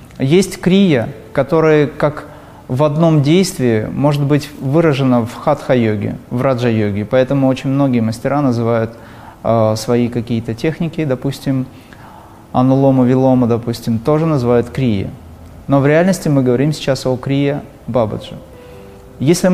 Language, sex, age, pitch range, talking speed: Russian, male, 30-49, 120-150 Hz, 115 wpm